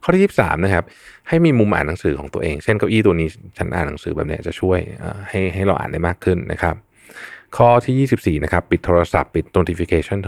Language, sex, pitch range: Thai, male, 85-110 Hz